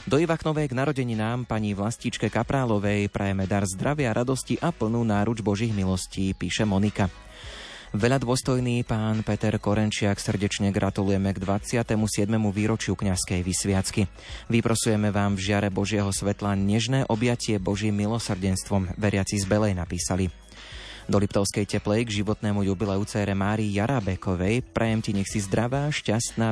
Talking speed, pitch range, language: 135 wpm, 100-115 Hz, Slovak